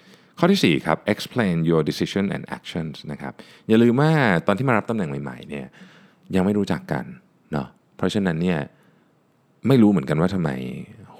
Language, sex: Thai, male